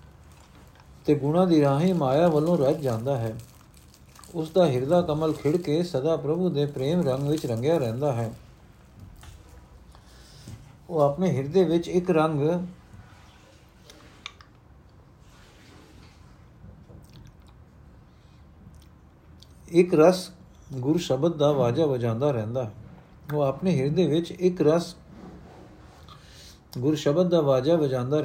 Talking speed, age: 80 wpm, 60-79